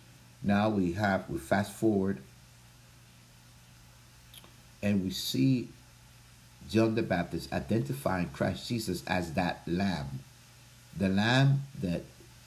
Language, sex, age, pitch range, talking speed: English, male, 60-79, 70-105 Hz, 100 wpm